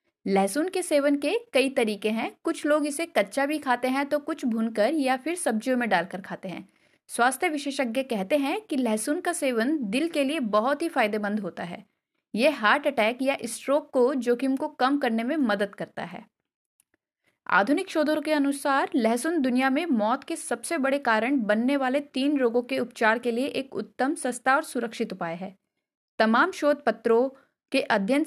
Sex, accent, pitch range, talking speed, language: female, native, 230-295 Hz, 180 wpm, Hindi